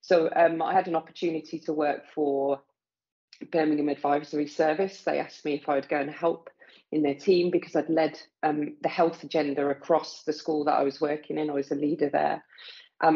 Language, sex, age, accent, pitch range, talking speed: English, female, 40-59, British, 145-170 Hz, 205 wpm